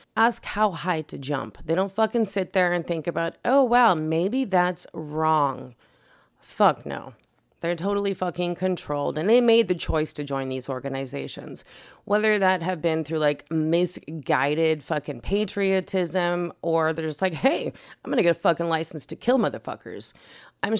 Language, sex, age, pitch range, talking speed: English, female, 30-49, 150-210 Hz, 165 wpm